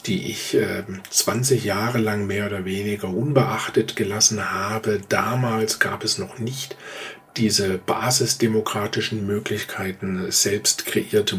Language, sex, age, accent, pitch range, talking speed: German, male, 50-69, German, 100-125 Hz, 110 wpm